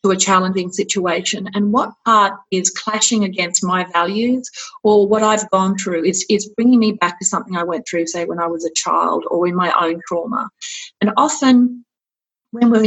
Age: 30-49